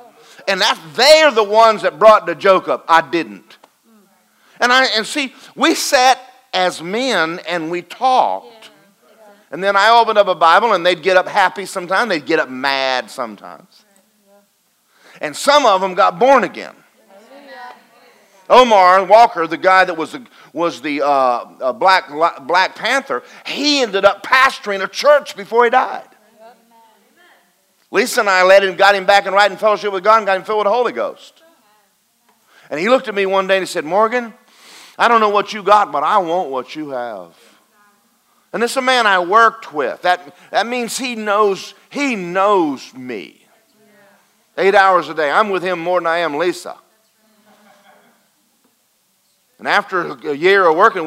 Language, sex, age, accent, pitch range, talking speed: English, male, 50-69, American, 180-230 Hz, 175 wpm